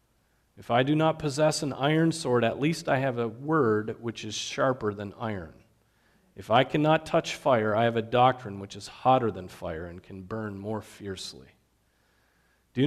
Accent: American